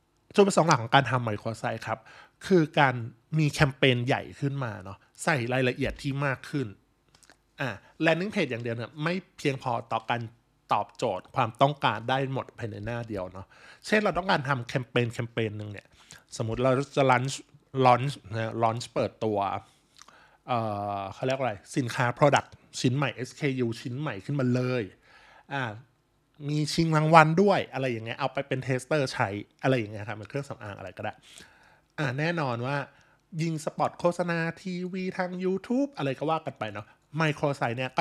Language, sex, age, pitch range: Thai, male, 20-39, 115-155 Hz